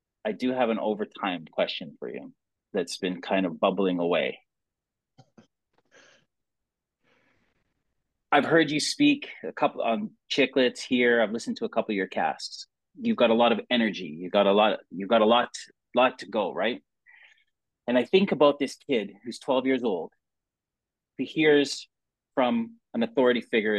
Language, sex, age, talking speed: English, male, 30-49, 165 wpm